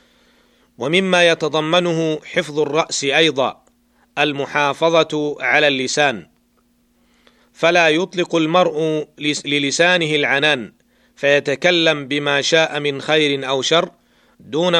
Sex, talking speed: male, 85 wpm